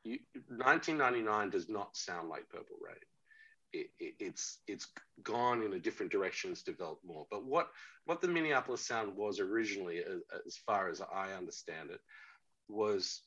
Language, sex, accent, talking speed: English, male, Australian, 165 wpm